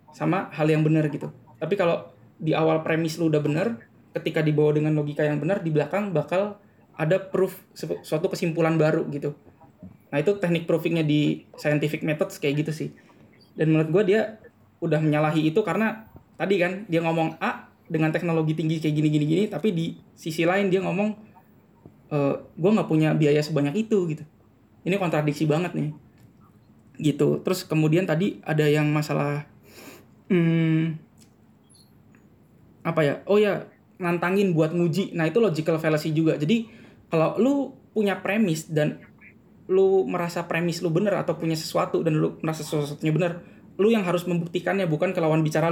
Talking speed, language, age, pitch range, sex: 160 wpm, Indonesian, 20-39, 155-195 Hz, male